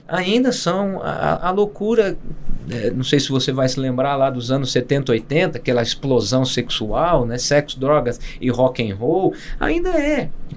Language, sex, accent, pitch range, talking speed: Portuguese, male, Brazilian, 125-165 Hz, 170 wpm